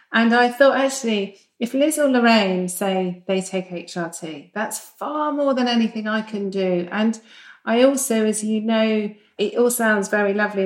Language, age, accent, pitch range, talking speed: English, 40-59, British, 195-240 Hz, 175 wpm